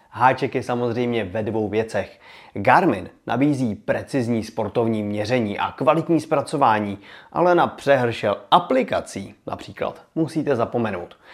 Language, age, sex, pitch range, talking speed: Czech, 30-49, male, 110-160 Hz, 110 wpm